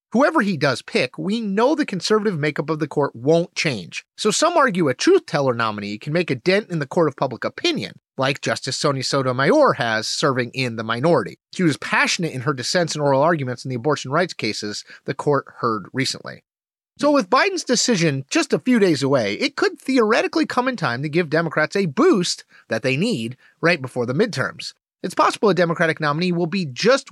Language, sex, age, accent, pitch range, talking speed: English, male, 30-49, American, 145-235 Hz, 205 wpm